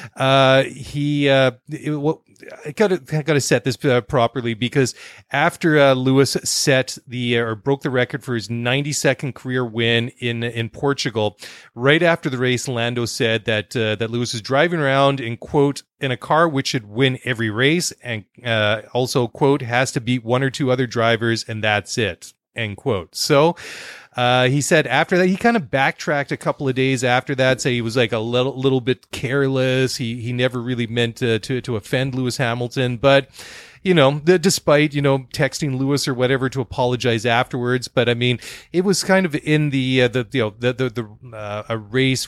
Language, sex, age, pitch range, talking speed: English, male, 30-49, 120-140 Hz, 205 wpm